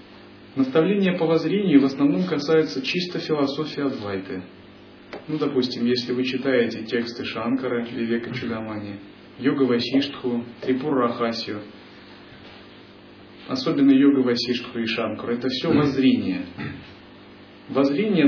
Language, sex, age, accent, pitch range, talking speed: Russian, male, 30-49, native, 115-155 Hz, 100 wpm